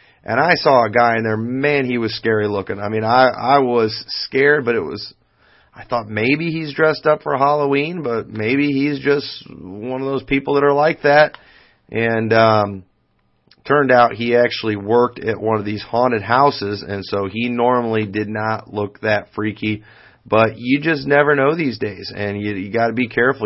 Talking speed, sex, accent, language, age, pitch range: 195 wpm, male, American, English, 30-49, 110-135 Hz